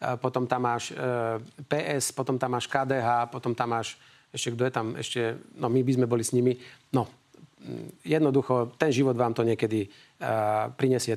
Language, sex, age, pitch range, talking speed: Slovak, male, 40-59, 115-130 Hz, 175 wpm